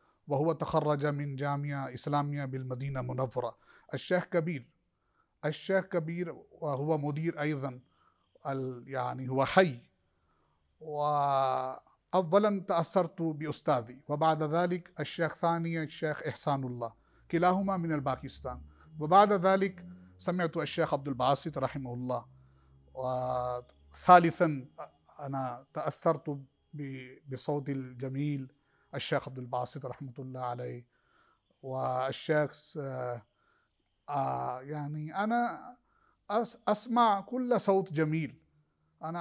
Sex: male